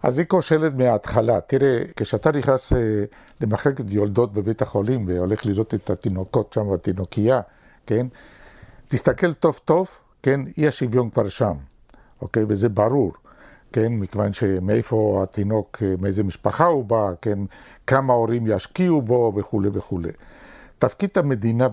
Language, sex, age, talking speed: Hebrew, male, 60-79, 125 wpm